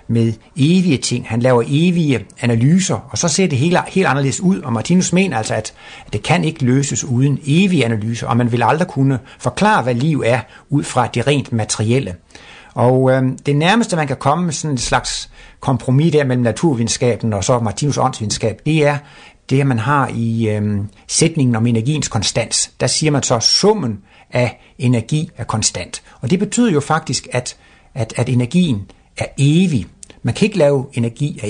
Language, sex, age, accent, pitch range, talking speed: Danish, male, 60-79, native, 115-155 Hz, 190 wpm